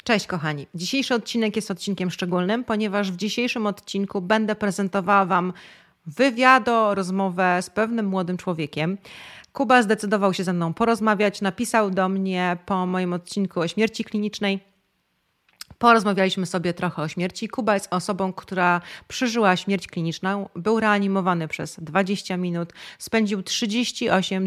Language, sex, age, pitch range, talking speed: Polish, female, 30-49, 175-215 Hz, 135 wpm